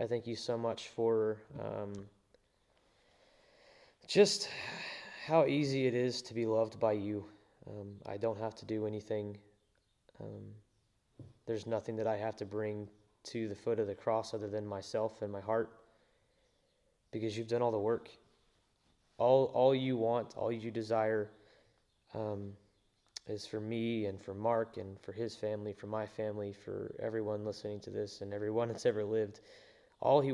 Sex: male